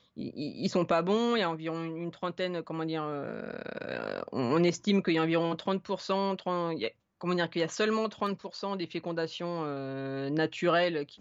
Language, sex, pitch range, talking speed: English, female, 160-200 Hz, 175 wpm